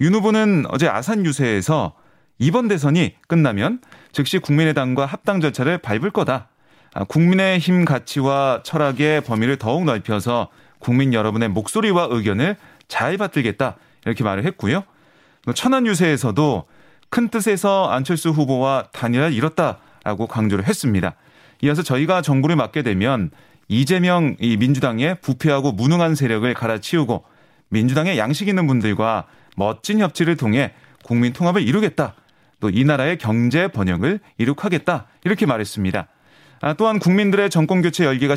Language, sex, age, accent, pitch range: Korean, male, 30-49, native, 125-175 Hz